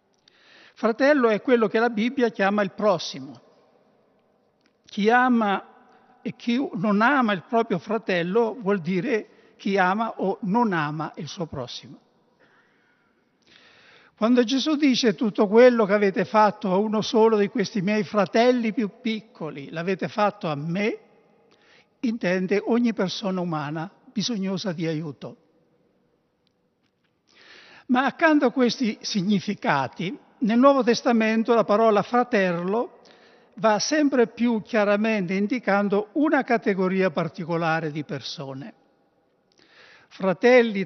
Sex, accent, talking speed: male, native, 115 wpm